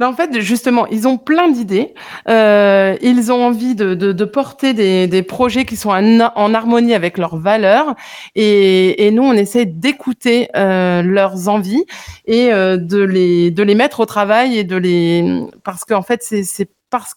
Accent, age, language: French, 30-49, French